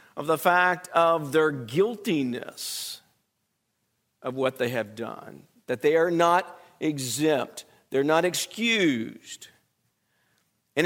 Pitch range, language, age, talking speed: 165-220 Hz, English, 50-69, 110 wpm